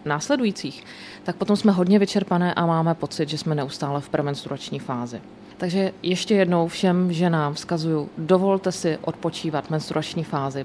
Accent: native